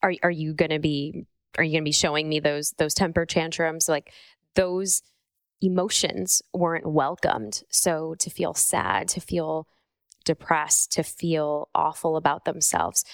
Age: 20-39